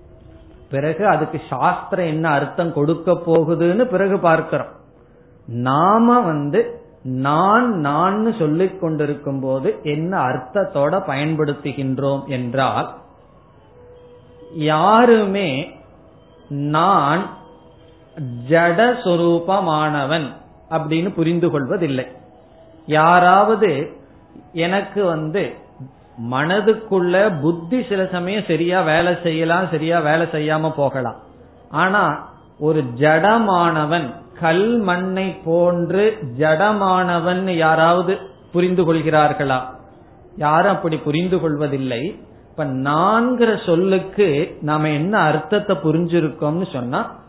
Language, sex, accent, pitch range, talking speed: Tamil, male, native, 145-185 Hz, 80 wpm